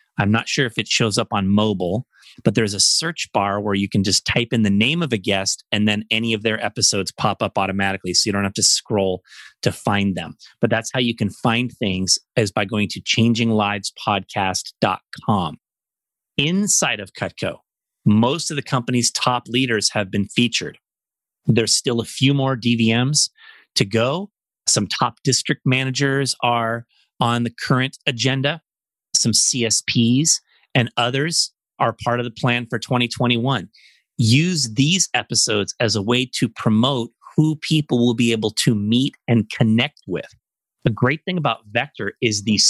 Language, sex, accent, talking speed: English, male, American, 170 wpm